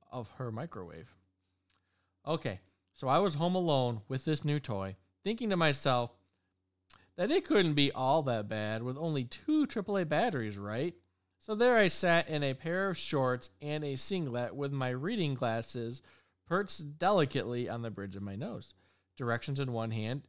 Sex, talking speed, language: male, 170 wpm, English